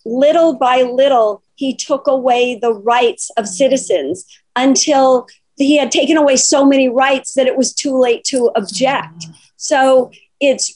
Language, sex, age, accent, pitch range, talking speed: English, female, 50-69, American, 220-265 Hz, 150 wpm